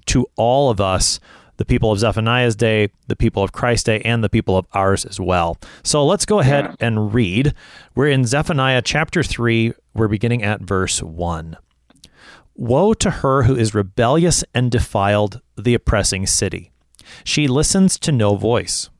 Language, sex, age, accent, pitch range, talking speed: English, male, 30-49, American, 100-130 Hz, 165 wpm